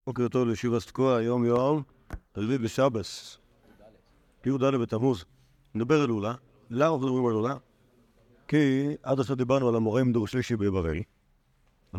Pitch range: 105-130 Hz